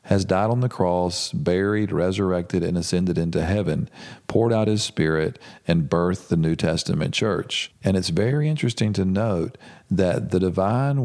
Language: English